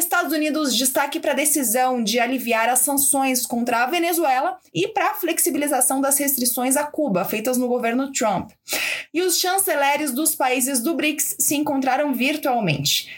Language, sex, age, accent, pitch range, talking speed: Portuguese, female, 20-39, Brazilian, 230-300 Hz, 160 wpm